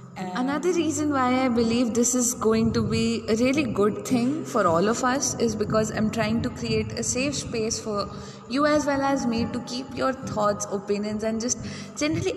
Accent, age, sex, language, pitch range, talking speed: native, 20-39, female, Hindi, 200-255 Hz, 200 wpm